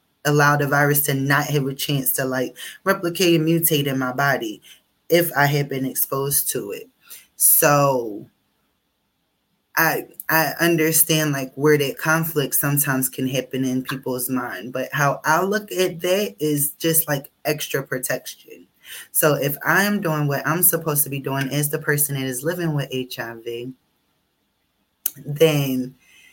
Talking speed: 155 wpm